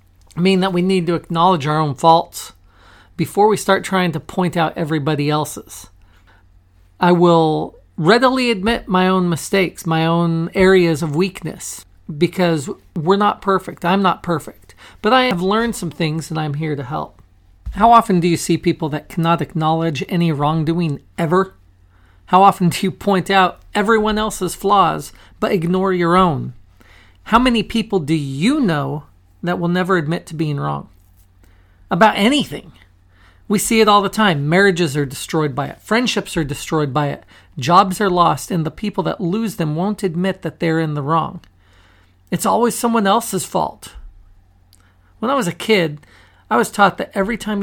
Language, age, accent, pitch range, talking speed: English, 40-59, American, 140-195 Hz, 175 wpm